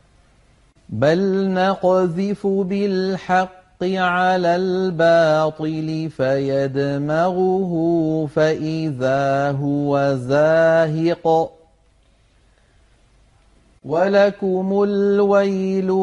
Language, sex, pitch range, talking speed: Arabic, male, 155-185 Hz, 40 wpm